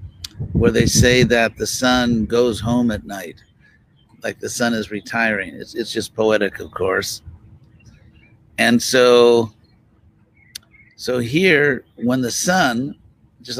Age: 50-69